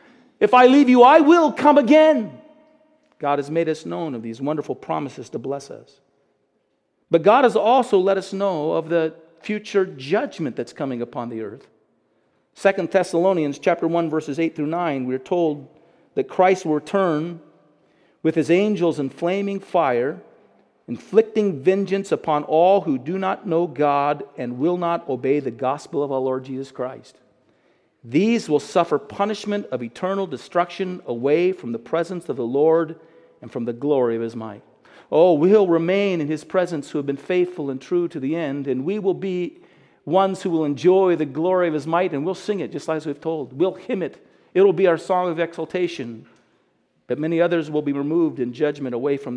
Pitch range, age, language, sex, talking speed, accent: 140-190 Hz, 50-69, English, male, 185 wpm, American